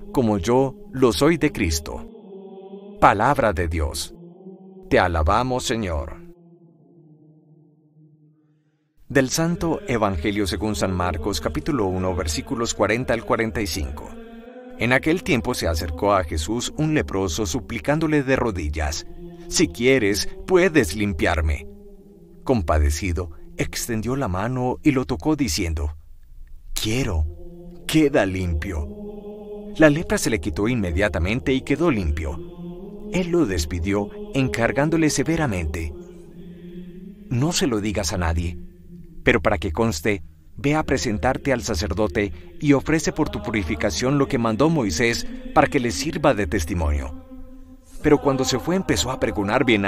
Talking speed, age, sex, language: 125 wpm, 40-59, male, English